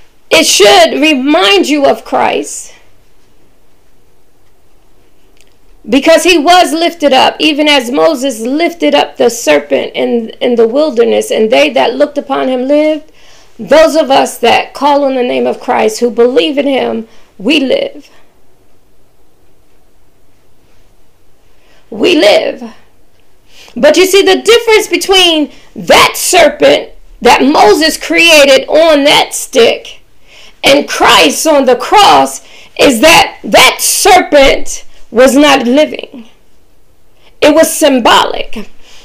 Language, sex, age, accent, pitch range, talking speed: English, female, 40-59, American, 265-355 Hz, 115 wpm